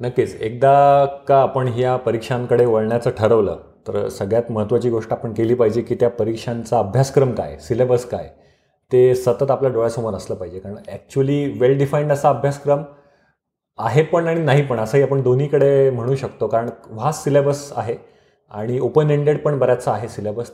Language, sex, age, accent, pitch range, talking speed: Marathi, male, 30-49, native, 120-145 Hz, 160 wpm